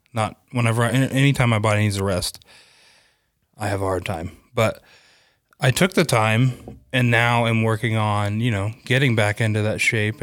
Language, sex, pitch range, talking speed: English, male, 105-120 Hz, 180 wpm